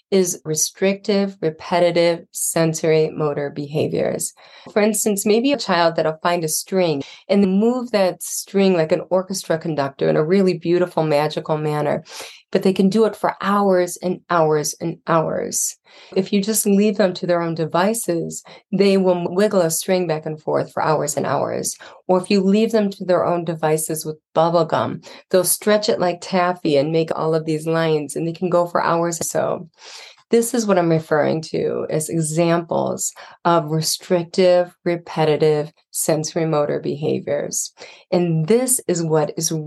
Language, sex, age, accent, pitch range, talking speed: English, female, 30-49, American, 160-195 Hz, 170 wpm